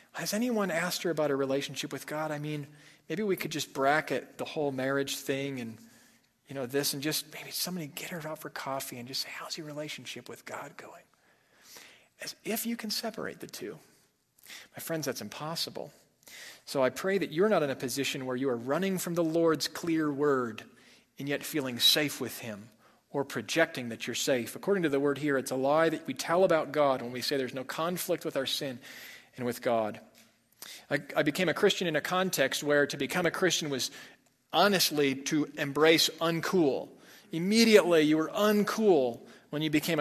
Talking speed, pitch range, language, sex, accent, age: 200 wpm, 135-165 Hz, English, male, American, 40-59